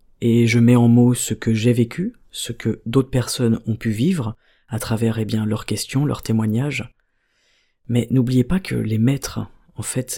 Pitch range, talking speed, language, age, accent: 115-135 Hz, 190 wpm, French, 40-59, French